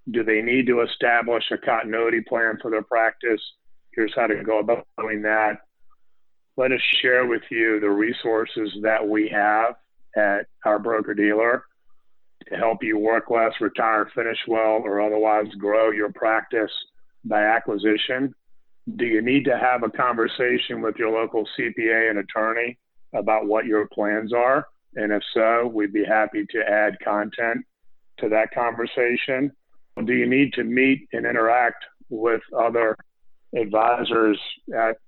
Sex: male